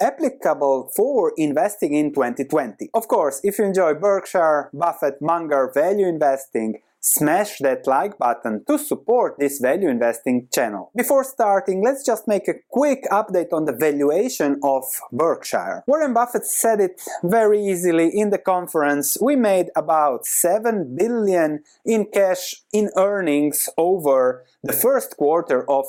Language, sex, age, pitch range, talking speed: English, male, 30-49, 145-215 Hz, 140 wpm